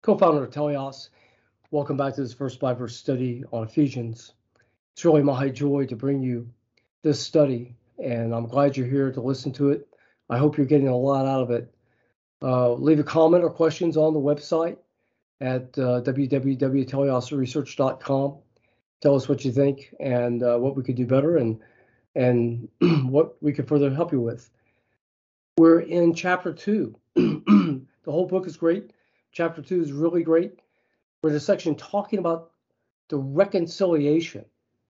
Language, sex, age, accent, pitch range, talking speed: English, male, 40-59, American, 125-165 Hz, 160 wpm